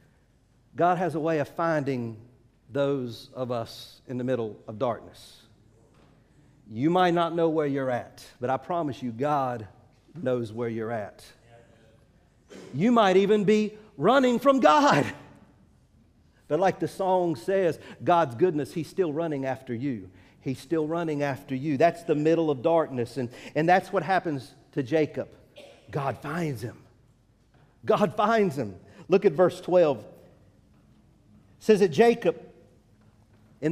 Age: 50-69